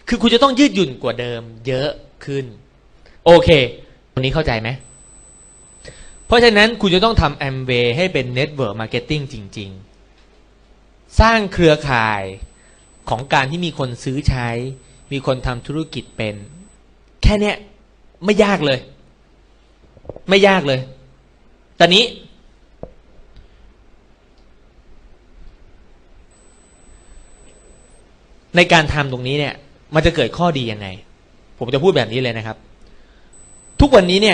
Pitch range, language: 110-160 Hz, Thai